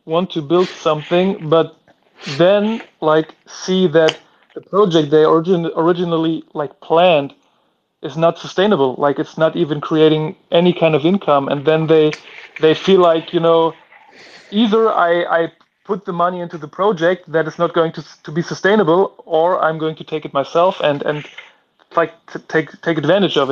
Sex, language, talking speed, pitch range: male, English, 175 wpm, 150-175 Hz